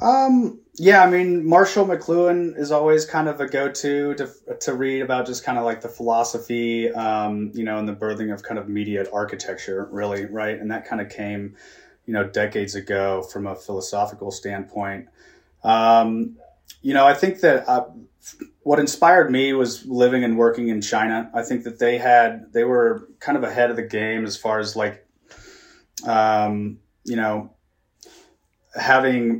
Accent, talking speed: American, 175 wpm